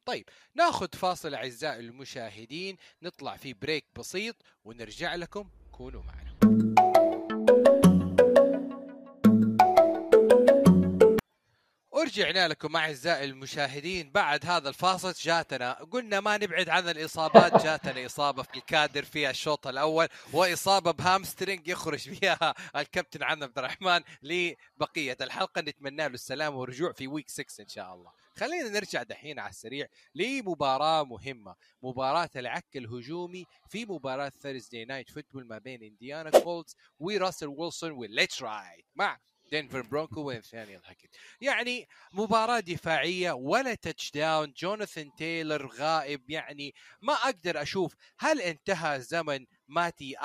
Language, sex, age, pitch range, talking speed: Arabic, male, 30-49, 140-185 Hz, 115 wpm